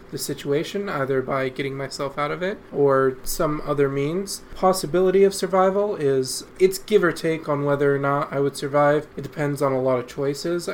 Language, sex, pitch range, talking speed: English, male, 135-175 Hz, 195 wpm